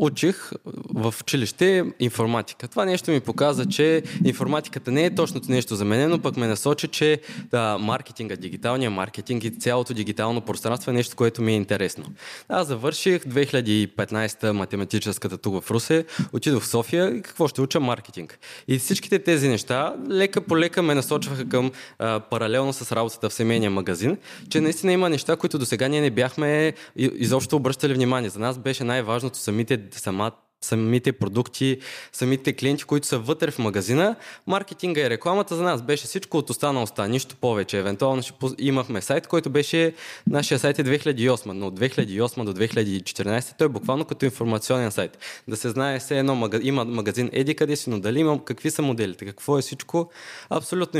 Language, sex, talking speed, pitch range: Bulgarian, male, 170 wpm, 115-150 Hz